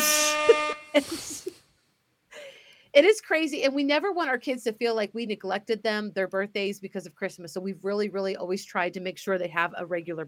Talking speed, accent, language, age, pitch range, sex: 195 wpm, American, English, 30-49, 205-265 Hz, female